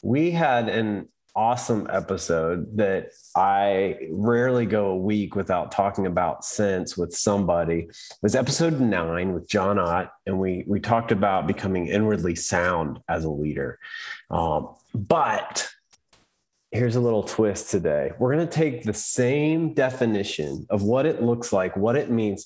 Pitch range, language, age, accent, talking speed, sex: 90-125 Hz, English, 30-49, American, 150 wpm, male